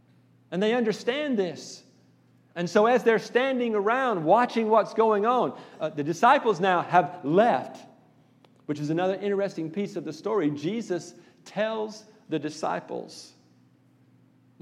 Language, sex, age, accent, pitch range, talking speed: English, male, 50-69, American, 120-185 Hz, 135 wpm